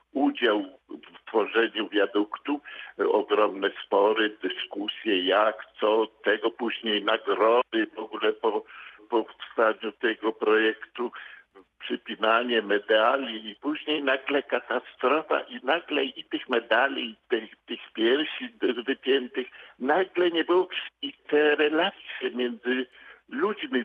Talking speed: 110 wpm